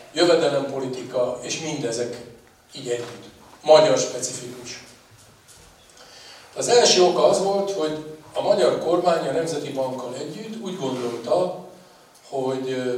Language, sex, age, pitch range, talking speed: Hungarian, male, 50-69, 125-155 Hz, 105 wpm